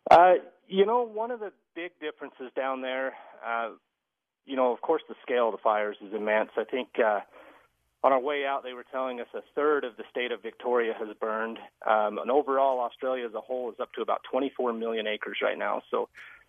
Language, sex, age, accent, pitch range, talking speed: English, male, 40-59, American, 110-135 Hz, 215 wpm